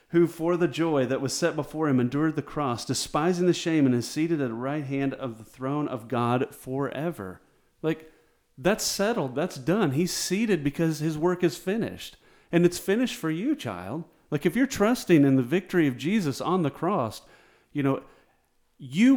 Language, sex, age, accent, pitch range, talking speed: English, male, 40-59, American, 120-175 Hz, 190 wpm